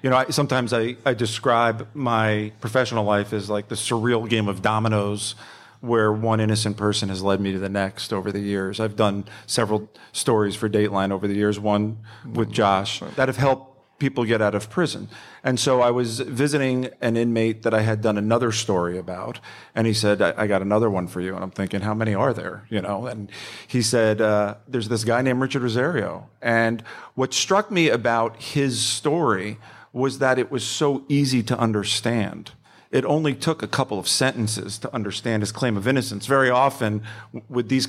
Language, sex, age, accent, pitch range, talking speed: English, male, 40-59, American, 105-125 Hz, 200 wpm